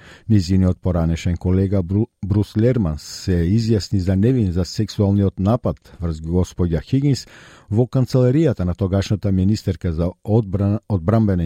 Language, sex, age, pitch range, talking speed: Bulgarian, male, 50-69, 90-120 Hz, 115 wpm